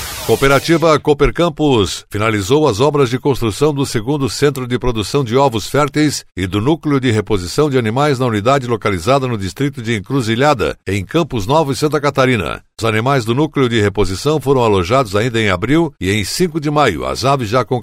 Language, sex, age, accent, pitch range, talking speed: Portuguese, male, 60-79, Brazilian, 115-145 Hz, 190 wpm